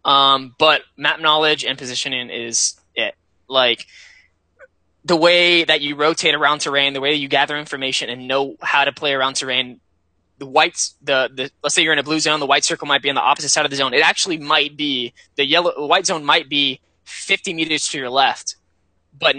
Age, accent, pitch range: 20-39, American, 130-160 Hz